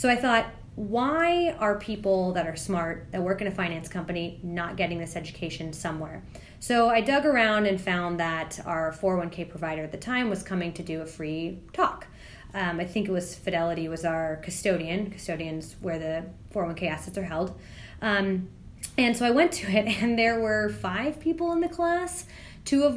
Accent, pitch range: American, 170-215 Hz